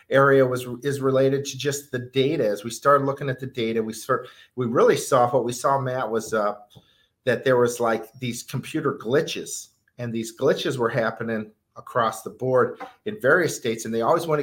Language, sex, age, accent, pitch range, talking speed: English, male, 50-69, American, 115-140 Hz, 200 wpm